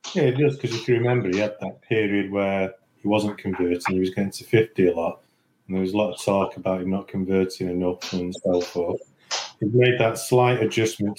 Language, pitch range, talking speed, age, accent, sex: English, 95-115 Hz, 225 wpm, 30-49, British, male